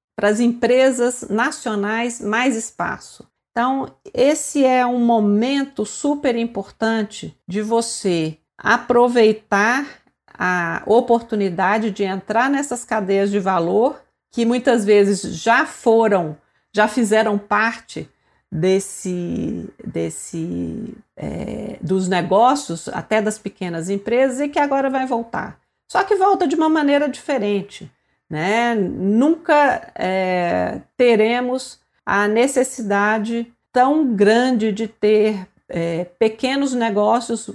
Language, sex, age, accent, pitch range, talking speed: Portuguese, female, 50-69, Brazilian, 200-245 Hz, 105 wpm